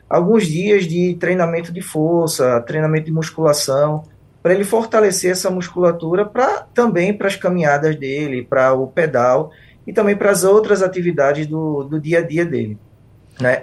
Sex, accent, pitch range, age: male, Brazilian, 135-165 Hz, 20-39